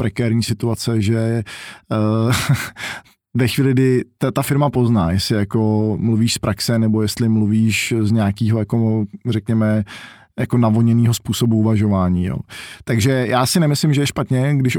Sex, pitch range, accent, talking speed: male, 110-120 Hz, native, 145 wpm